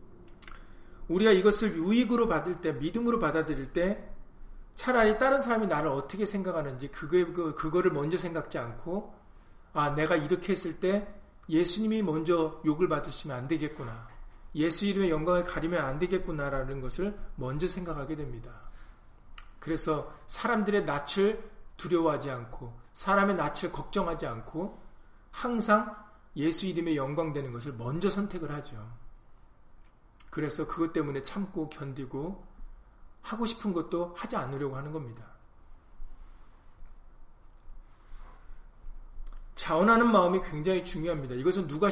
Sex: male